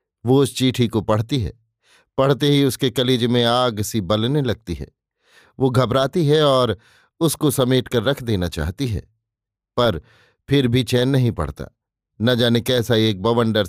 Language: Hindi